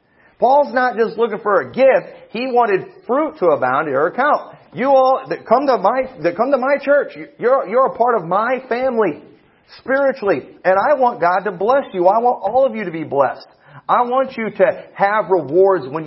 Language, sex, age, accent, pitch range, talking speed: English, male, 40-59, American, 160-245 Hz, 210 wpm